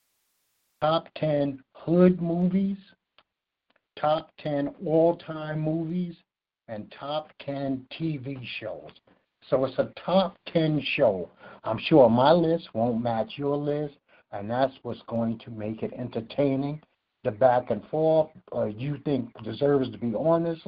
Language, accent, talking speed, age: English, American, 135 wpm, 60-79